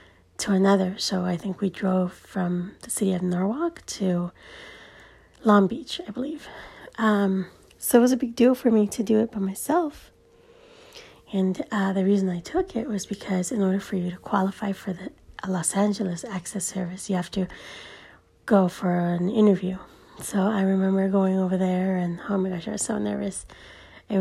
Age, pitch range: 30-49, 185-210 Hz